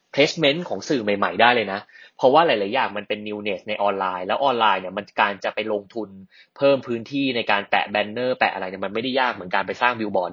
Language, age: Thai, 20-39